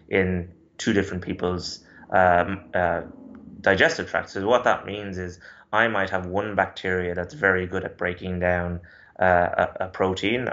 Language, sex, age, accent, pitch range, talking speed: English, male, 20-39, British, 90-95 Hz, 160 wpm